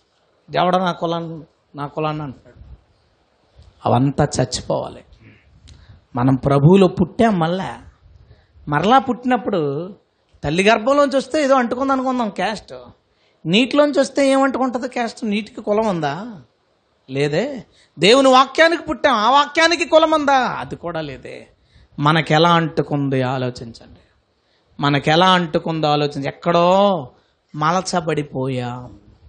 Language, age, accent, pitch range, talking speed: Telugu, 30-49, native, 155-245 Hz, 100 wpm